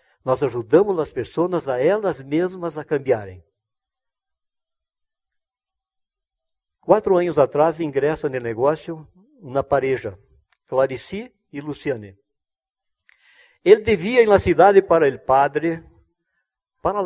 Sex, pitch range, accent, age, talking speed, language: male, 115-195 Hz, Brazilian, 60-79, 100 wpm, Spanish